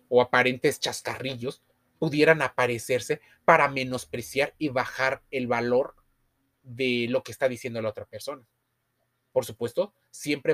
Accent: Mexican